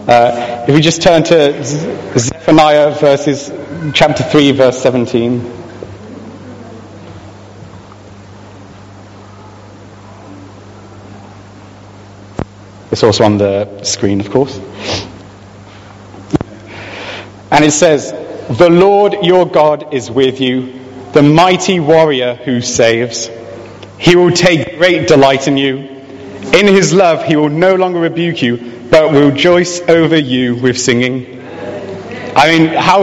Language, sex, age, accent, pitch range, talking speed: English, male, 30-49, British, 115-170 Hz, 105 wpm